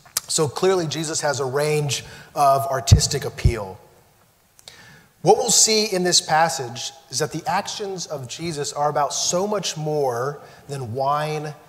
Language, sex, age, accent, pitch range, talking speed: English, male, 30-49, American, 135-165 Hz, 145 wpm